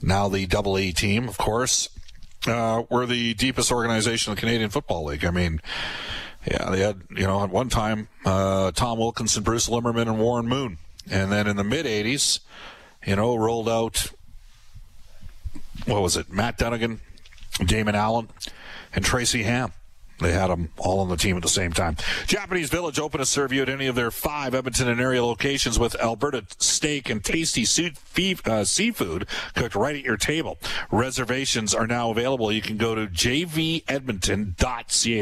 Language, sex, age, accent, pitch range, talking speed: English, male, 40-59, American, 100-130 Hz, 170 wpm